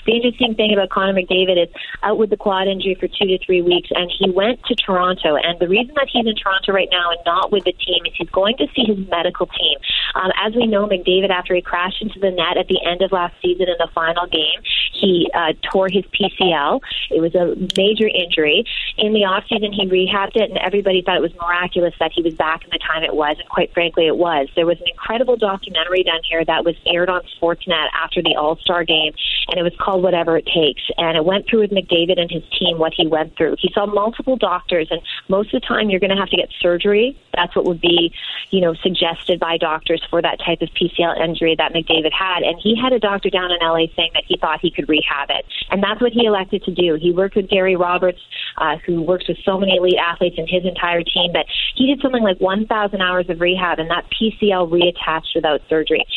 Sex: female